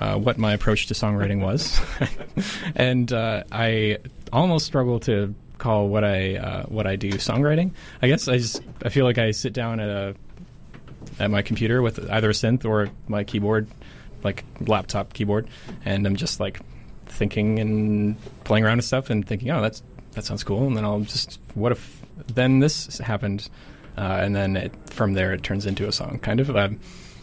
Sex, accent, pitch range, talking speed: male, American, 100-120 Hz, 190 wpm